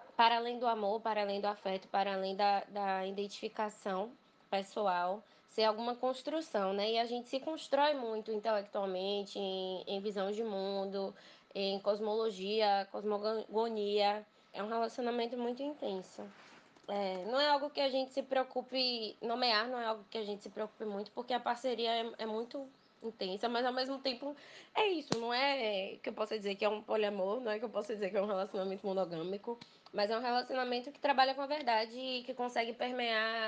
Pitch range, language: 205-245 Hz, Portuguese